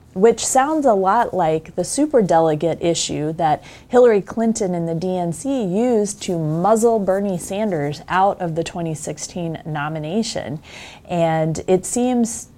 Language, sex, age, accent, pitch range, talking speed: English, female, 30-49, American, 170-205 Hz, 130 wpm